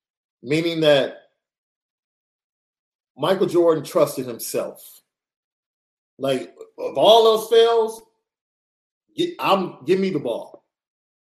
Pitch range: 135-180 Hz